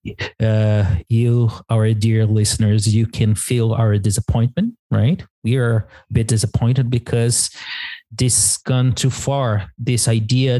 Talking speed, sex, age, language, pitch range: 135 wpm, male, 30-49, English, 110-135 Hz